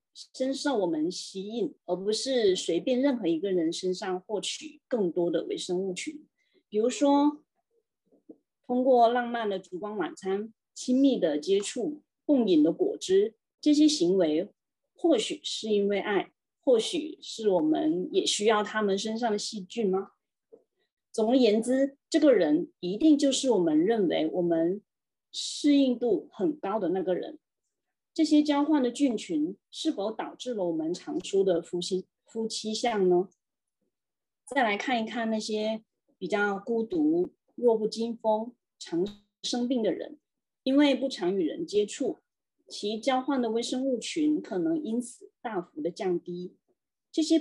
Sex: female